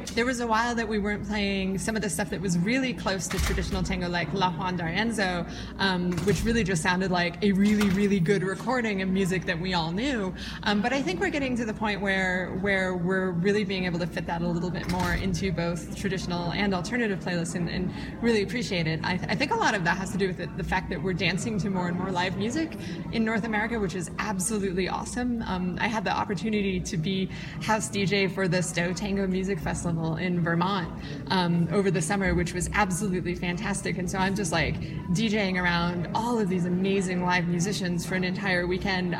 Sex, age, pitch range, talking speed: female, 20-39, 175-210 Hz, 220 wpm